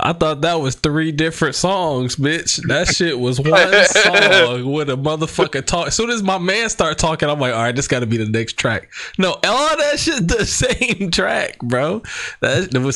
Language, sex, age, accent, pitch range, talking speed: English, male, 20-39, American, 100-130 Hz, 200 wpm